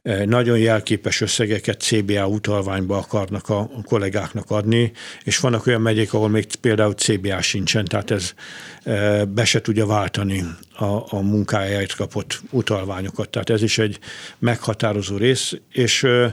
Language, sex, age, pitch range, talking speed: Hungarian, male, 60-79, 100-115 Hz, 130 wpm